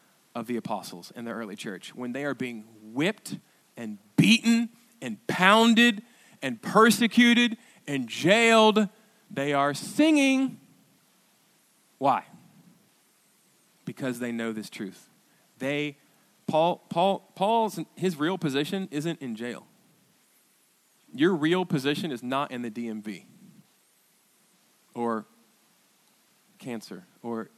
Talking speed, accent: 110 wpm, American